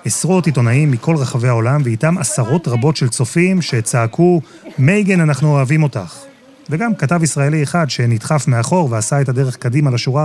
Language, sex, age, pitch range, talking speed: Hebrew, male, 30-49, 120-165 Hz, 150 wpm